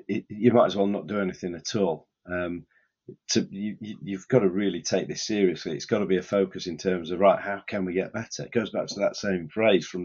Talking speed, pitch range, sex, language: 255 wpm, 95-105 Hz, male, English